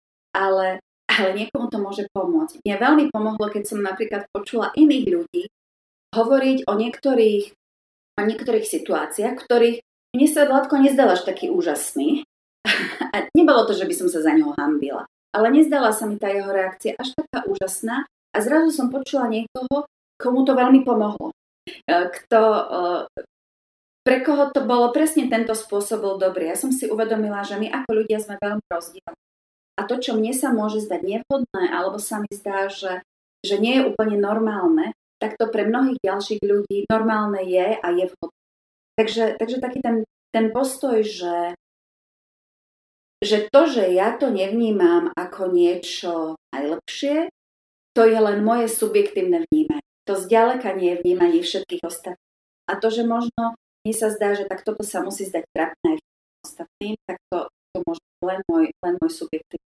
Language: Slovak